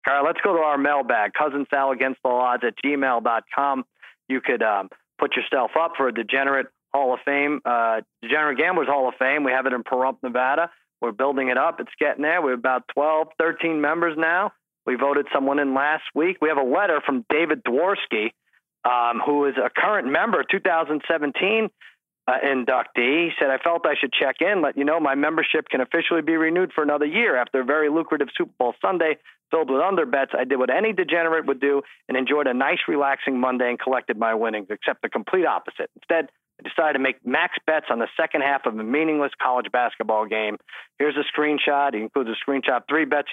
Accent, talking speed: American, 205 wpm